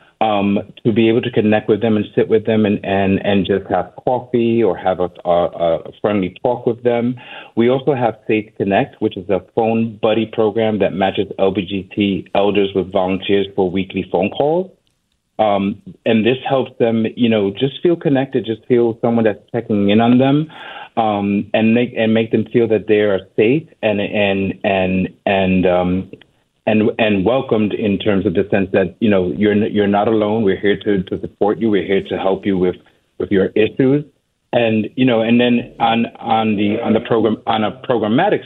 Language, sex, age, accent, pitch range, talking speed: English, male, 30-49, American, 100-120 Hz, 200 wpm